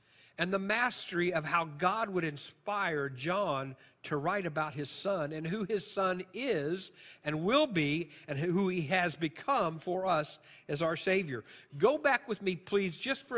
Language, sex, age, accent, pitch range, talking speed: English, male, 50-69, American, 150-190 Hz, 175 wpm